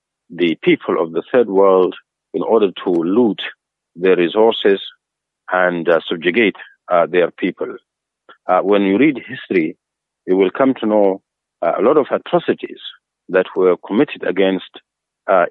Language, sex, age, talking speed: English, male, 50-69, 145 wpm